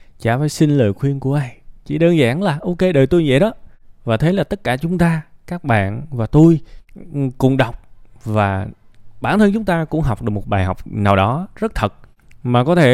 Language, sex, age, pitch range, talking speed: Vietnamese, male, 20-39, 110-135 Hz, 220 wpm